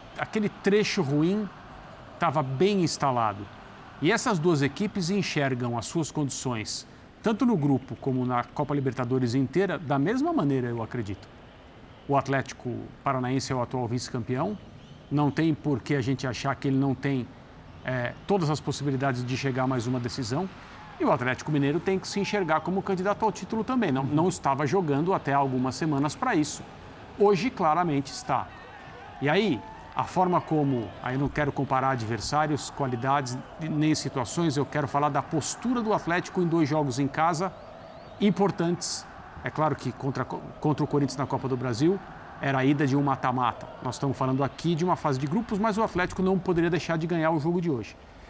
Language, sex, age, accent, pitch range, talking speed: Portuguese, male, 50-69, Brazilian, 130-170 Hz, 180 wpm